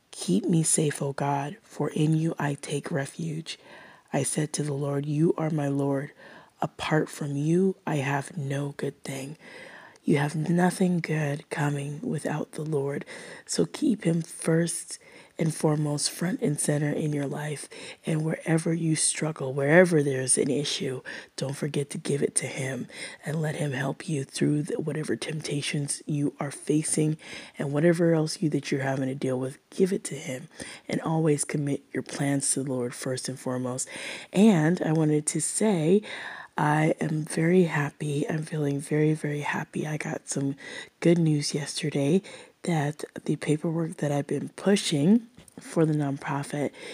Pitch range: 145-165 Hz